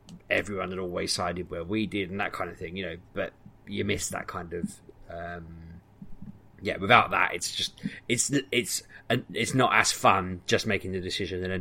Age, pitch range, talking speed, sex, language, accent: 20-39, 90-110 Hz, 190 wpm, male, English, British